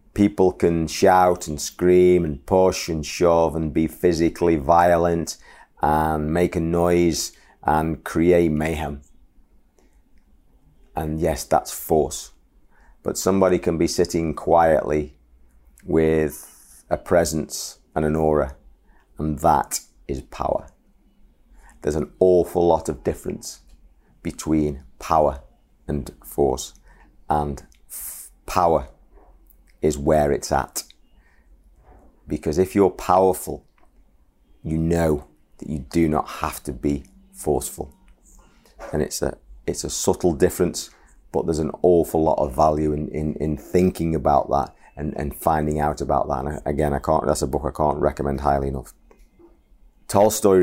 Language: English